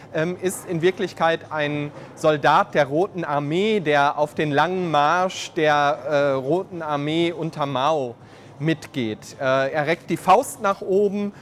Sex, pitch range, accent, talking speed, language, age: male, 145-175 Hz, German, 140 wpm, German, 30-49